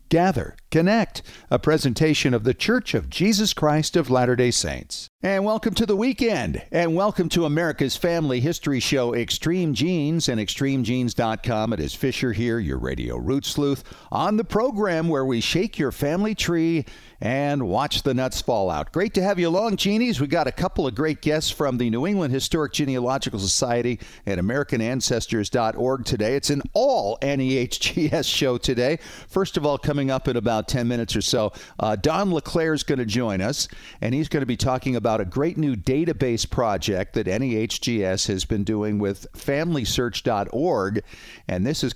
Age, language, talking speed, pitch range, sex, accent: 50-69, English, 175 wpm, 110-155 Hz, male, American